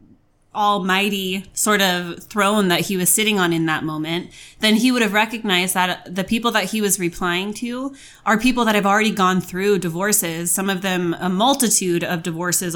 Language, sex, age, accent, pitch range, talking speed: English, female, 20-39, American, 175-210 Hz, 190 wpm